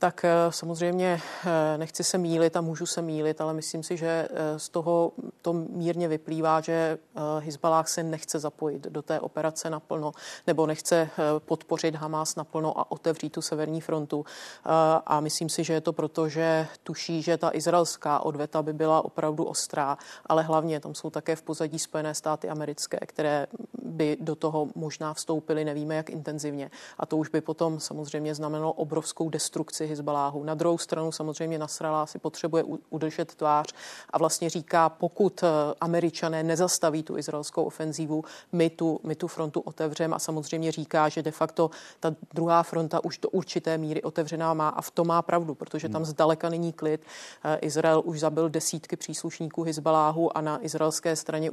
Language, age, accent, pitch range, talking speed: Czech, 30-49, native, 155-165 Hz, 165 wpm